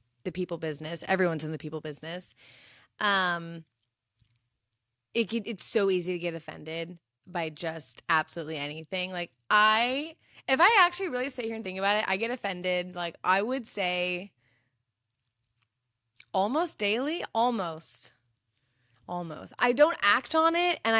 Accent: American